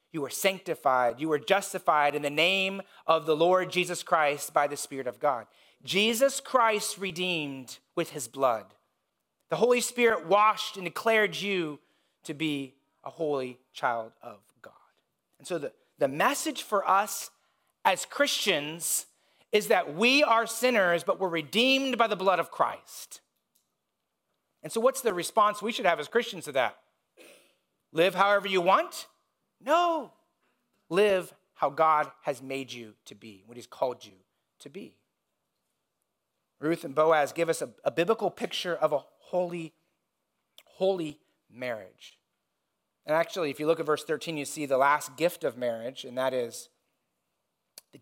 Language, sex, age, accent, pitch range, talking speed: English, male, 30-49, American, 145-195 Hz, 155 wpm